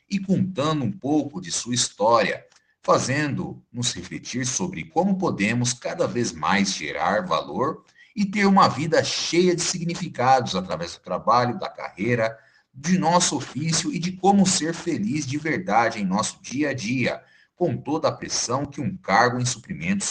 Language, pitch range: Portuguese, 115-175 Hz